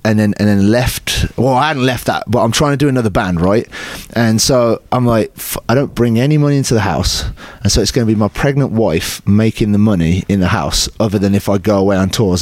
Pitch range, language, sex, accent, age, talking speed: 100-125 Hz, English, male, British, 30-49, 260 wpm